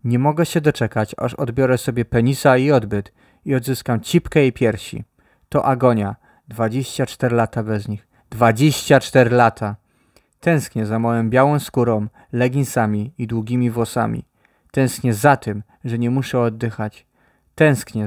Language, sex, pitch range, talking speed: Polish, male, 115-135 Hz, 140 wpm